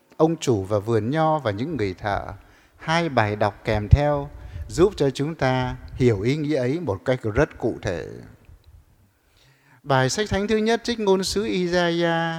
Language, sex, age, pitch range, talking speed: English, male, 60-79, 120-175 Hz, 175 wpm